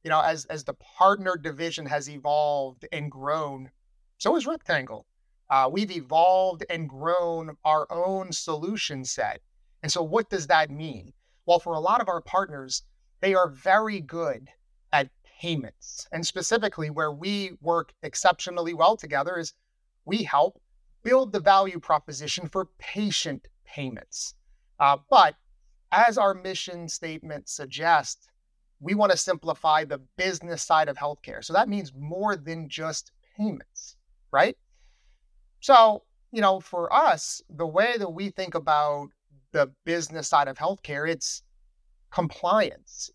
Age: 30-49